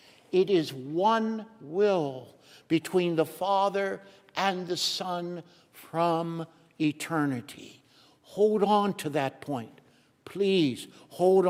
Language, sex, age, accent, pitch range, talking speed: English, male, 60-79, American, 155-190 Hz, 100 wpm